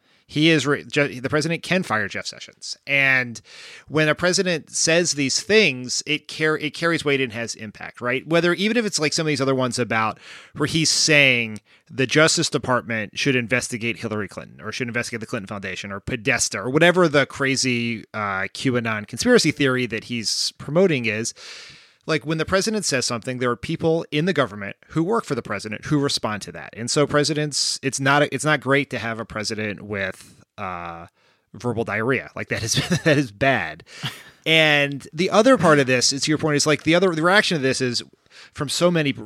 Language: English